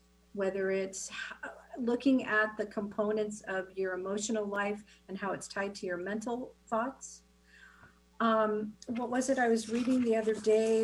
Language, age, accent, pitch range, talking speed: English, 50-69, American, 175-240 Hz, 155 wpm